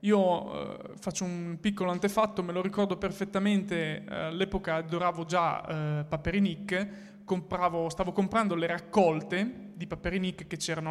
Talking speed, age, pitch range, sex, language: 140 wpm, 20-39, 170-205 Hz, male, Italian